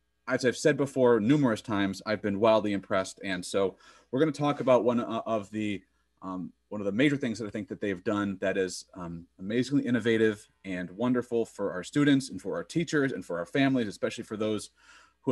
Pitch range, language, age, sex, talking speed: 100-140 Hz, English, 30-49, male, 210 wpm